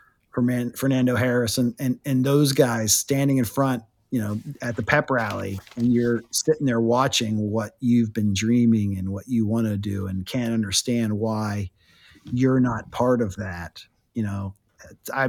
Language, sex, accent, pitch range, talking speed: English, male, American, 105-125 Hz, 165 wpm